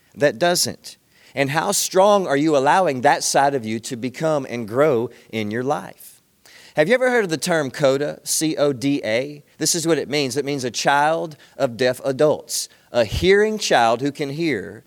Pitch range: 130-165 Hz